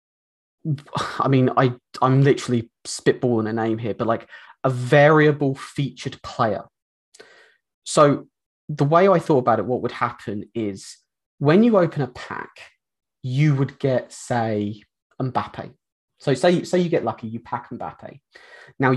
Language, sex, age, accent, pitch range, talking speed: English, male, 20-39, British, 120-160 Hz, 145 wpm